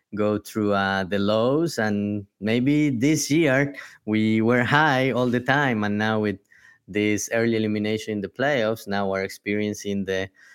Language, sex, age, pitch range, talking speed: English, male, 20-39, 100-120 Hz, 160 wpm